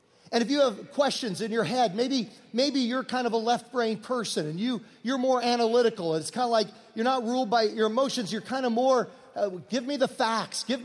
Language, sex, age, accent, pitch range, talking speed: English, male, 40-59, American, 205-260 Hz, 225 wpm